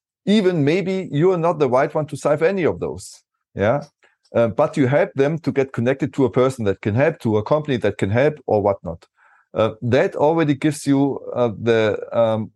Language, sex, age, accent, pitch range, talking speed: English, male, 30-49, German, 110-145 Hz, 210 wpm